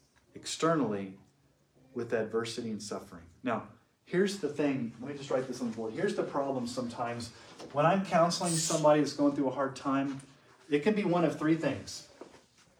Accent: American